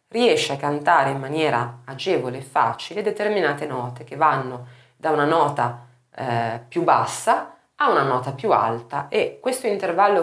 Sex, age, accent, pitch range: female, 30-49, native, 125-185 Hz